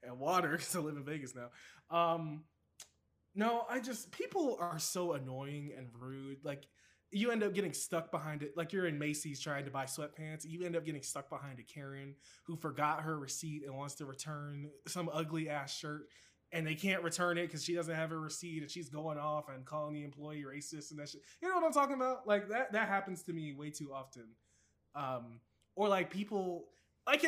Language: English